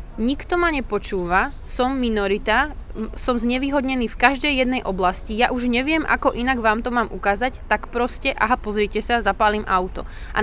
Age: 20-39